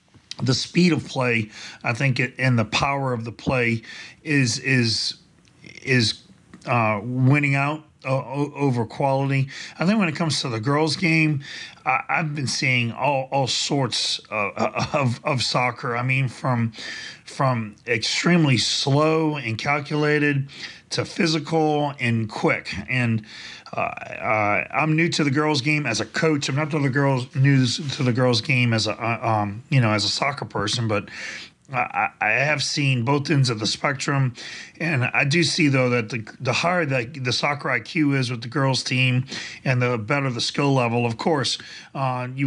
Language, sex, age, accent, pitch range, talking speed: English, male, 40-59, American, 120-150 Hz, 170 wpm